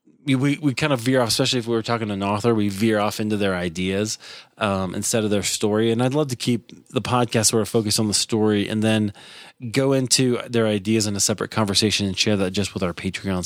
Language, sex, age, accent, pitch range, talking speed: English, male, 30-49, American, 110-130 Hz, 245 wpm